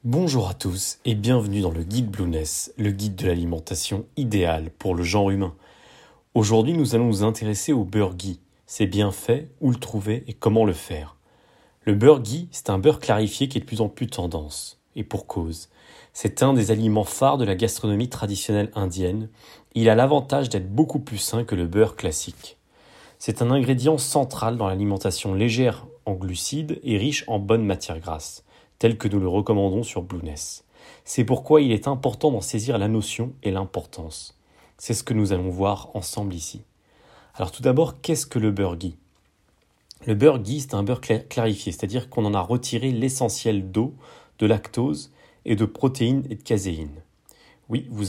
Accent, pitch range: French, 95-125 Hz